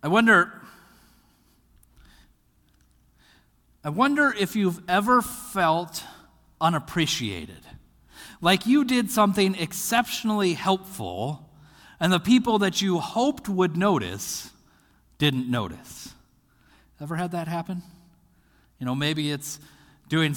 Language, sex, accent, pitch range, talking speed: English, male, American, 125-195 Hz, 100 wpm